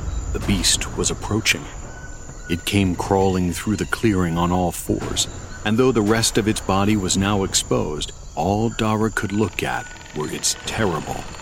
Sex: male